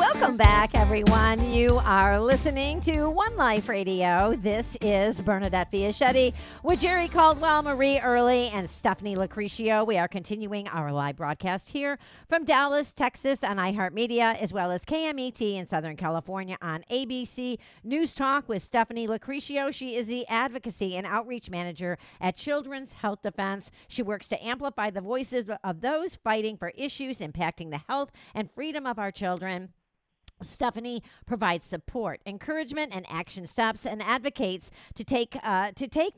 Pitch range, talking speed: 185-260 Hz, 155 wpm